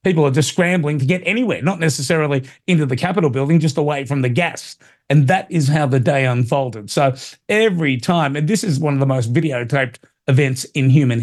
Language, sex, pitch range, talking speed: English, male, 135-160 Hz, 210 wpm